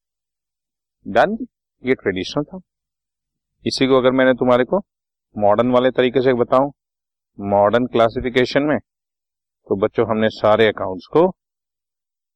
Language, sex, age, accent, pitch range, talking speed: Hindi, male, 50-69, native, 100-145 Hz, 115 wpm